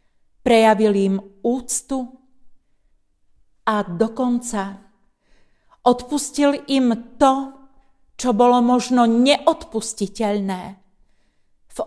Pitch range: 210-265 Hz